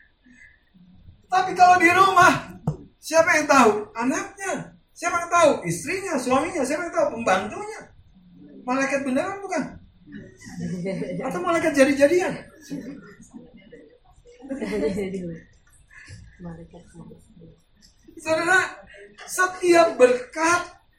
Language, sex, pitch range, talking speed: Indonesian, male, 200-300 Hz, 75 wpm